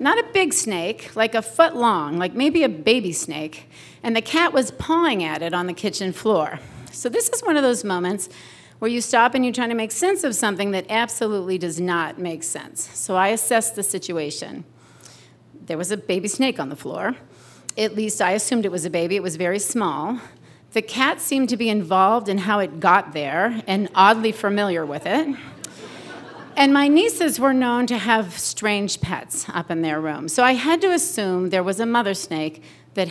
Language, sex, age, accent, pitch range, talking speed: English, female, 40-59, American, 185-255 Hz, 205 wpm